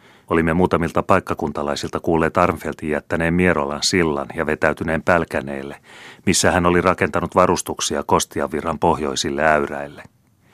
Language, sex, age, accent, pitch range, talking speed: Finnish, male, 30-49, native, 75-85 Hz, 115 wpm